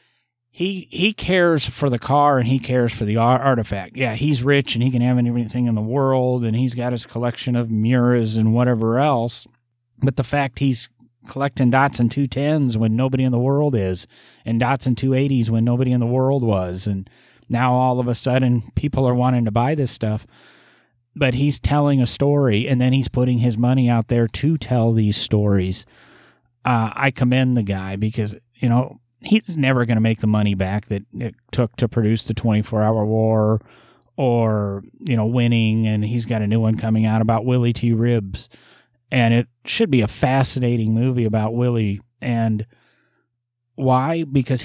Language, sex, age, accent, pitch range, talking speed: English, male, 30-49, American, 110-130 Hz, 190 wpm